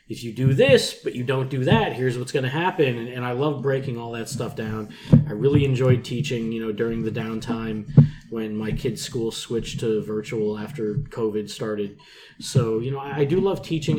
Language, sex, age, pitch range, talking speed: English, male, 20-39, 115-135 Hz, 215 wpm